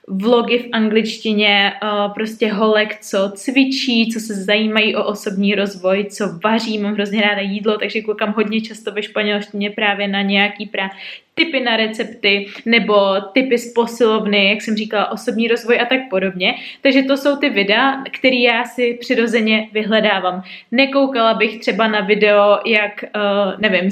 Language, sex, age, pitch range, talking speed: Czech, female, 20-39, 205-250 Hz, 160 wpm